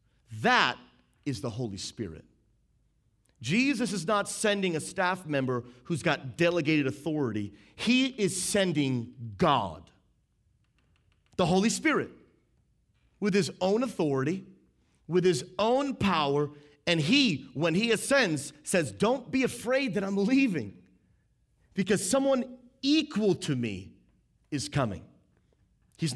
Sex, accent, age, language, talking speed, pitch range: male, American, 40-59, English, 115 wpm, 130-200 Hz